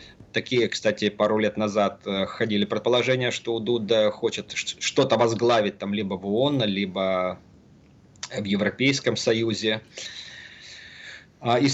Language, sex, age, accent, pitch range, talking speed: Russian, male, 20-39, native, 105-140 Hz, 100 wpm